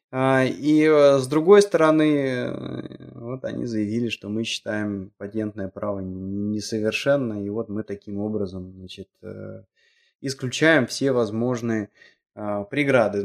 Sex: male